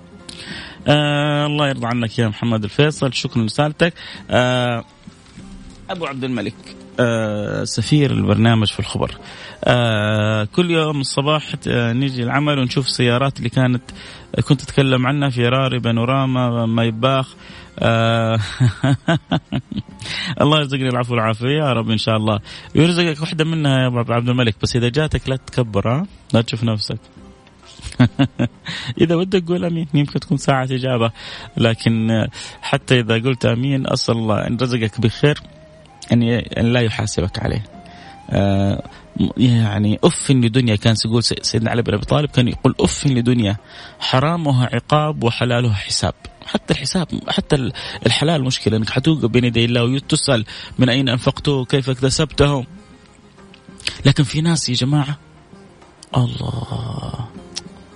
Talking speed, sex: 130 wpm, male